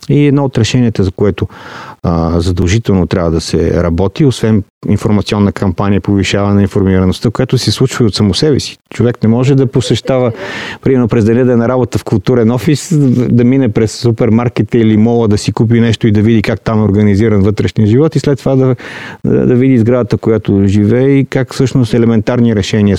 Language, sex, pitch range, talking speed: Bulgarian, male, 105-125 Hz, 195 wpm